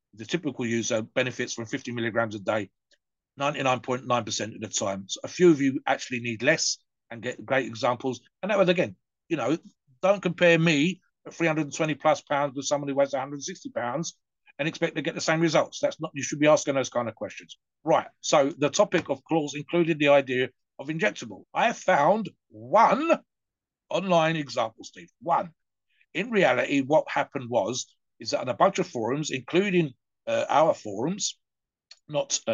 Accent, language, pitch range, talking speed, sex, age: British, English, 120-165 Hz, 175 wpm, male, 50-69